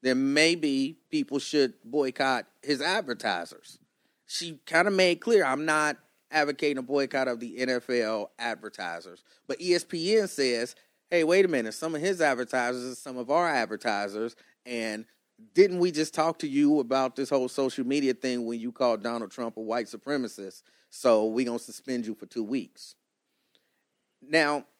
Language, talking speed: English, 165 wpm